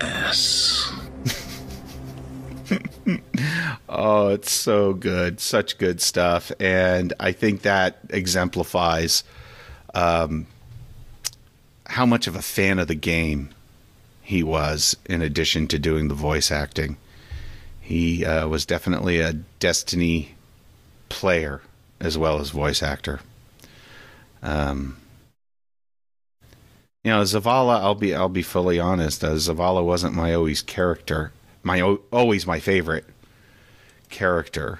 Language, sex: English, male